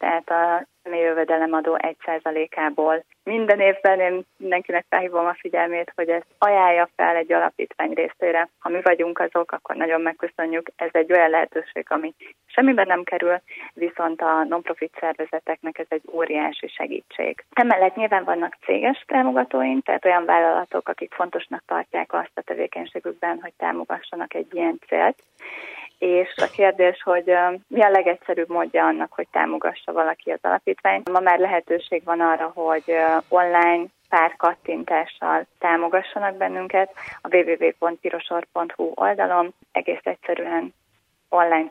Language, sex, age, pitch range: Hungarian, female, 20-39, 165-190 Hz